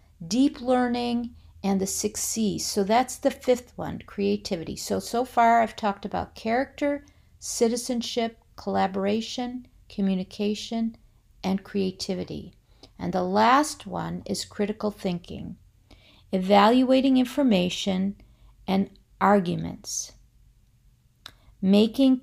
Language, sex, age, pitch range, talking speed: English, female, 50-69, 190-230 Hz, 95 wpm